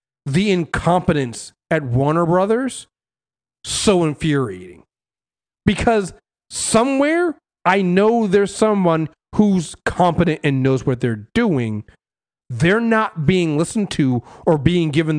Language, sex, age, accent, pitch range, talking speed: English, male, 40-59, American, 140-205 Hz, 110 wpm